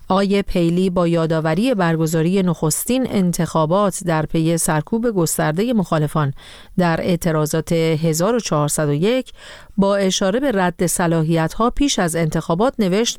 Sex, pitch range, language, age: female, 160-215 Hz, Persian, 40-59